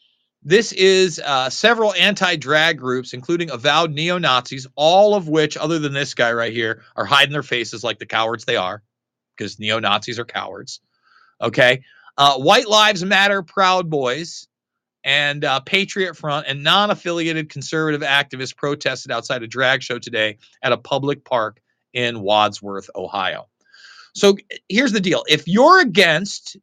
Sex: male